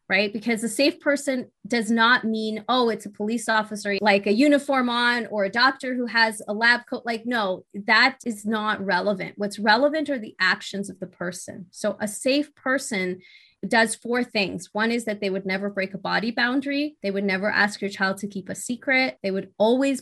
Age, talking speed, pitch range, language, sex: 20-39, 205 wpm, 200-250 Hz, English, female